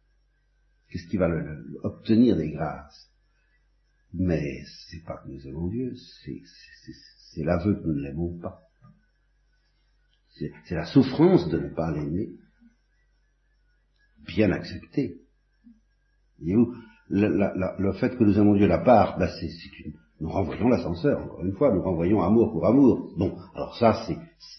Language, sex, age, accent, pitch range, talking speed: French, male, 60-79, French, 90-120 Hz, 165 wpm